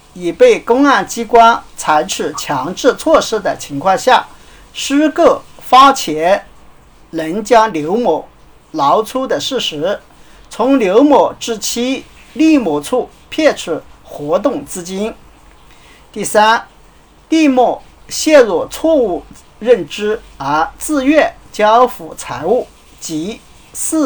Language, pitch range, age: Chinese, 190-280 Hz, 50-69